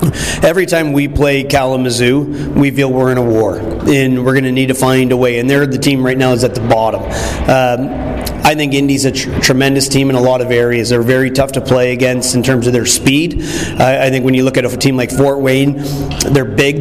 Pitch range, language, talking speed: 125-135 Hz, English, 245 wpm